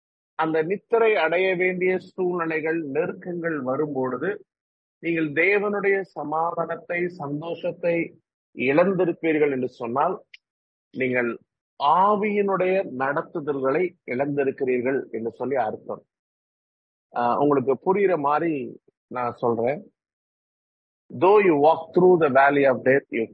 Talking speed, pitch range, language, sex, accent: 65 wpm, 125-180 Hz, English, male, Indian